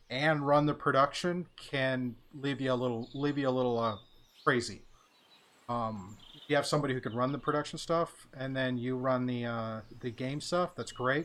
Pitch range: 125-150 Hz